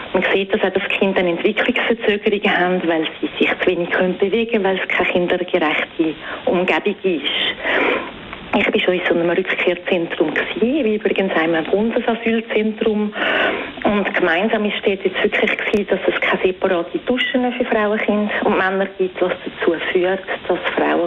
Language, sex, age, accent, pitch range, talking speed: German, female, 40-59, Austrian, 180-220 Hz, 140 wpm